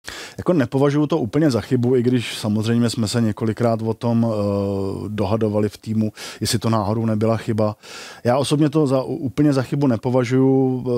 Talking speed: 170 wpm